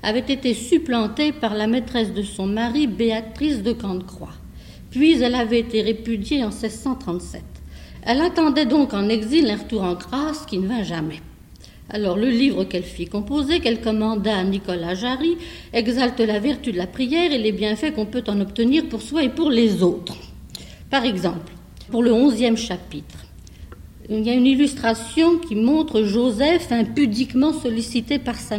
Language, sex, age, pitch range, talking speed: French, female, 60-79, 215-285 Hz, 170 wpm